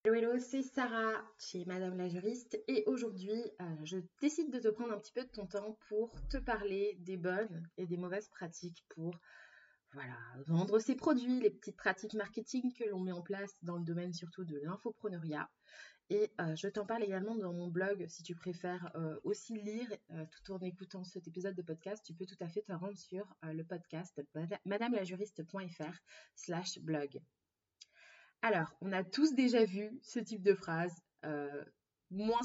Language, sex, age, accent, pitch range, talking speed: French, female, 20-39, French, 175-225 Hz, 185 wpm